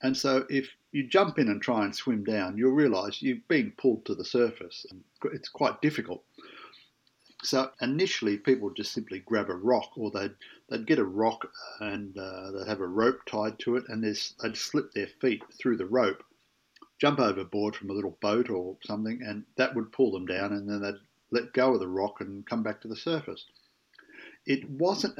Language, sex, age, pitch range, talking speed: English, male, 50-69, 105-135 Hz, 200 wpm